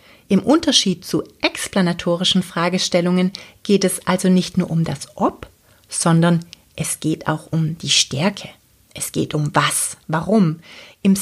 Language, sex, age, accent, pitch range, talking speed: German, female, 30-49, German, 170-195 Hz, 140 wpm